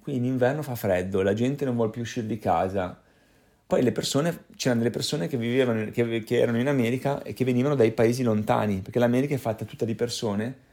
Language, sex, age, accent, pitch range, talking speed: Italian, male, 30-49, native, 110-135 Hz, 220 wpm